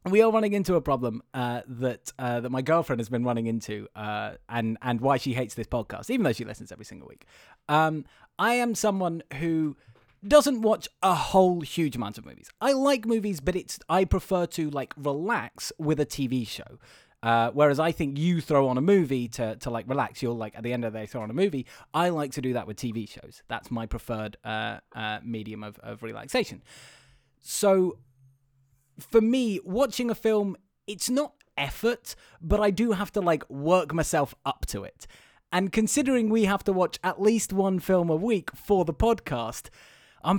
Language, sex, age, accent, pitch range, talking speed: English, male, 20-39, British, 135-220 Hz, 200 wpm